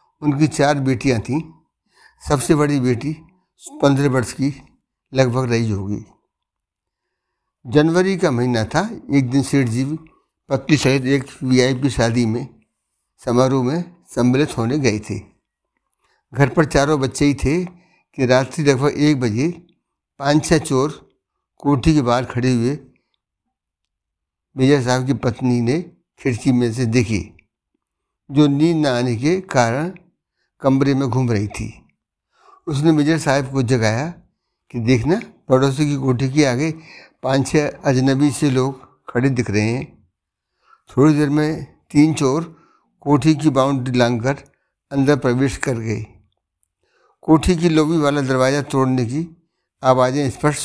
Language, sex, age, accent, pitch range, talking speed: Hindi, male, 60-79, native, 125-150 Hz, 135 wpm